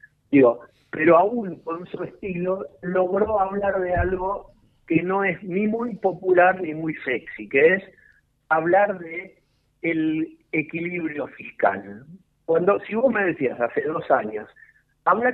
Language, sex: Spanish, male